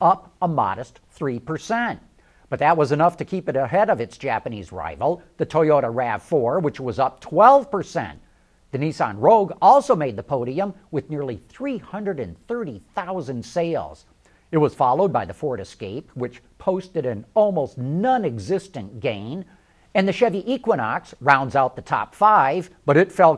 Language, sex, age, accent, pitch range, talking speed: English, male, 50-69, American, 135-200 Hz, 155 wpm